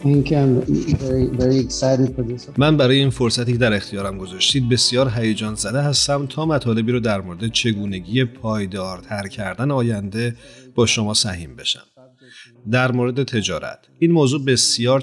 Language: Persian